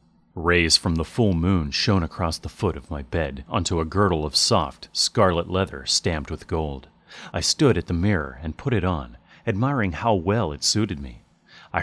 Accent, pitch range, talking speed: American, 80-115 Hz, 195 wpm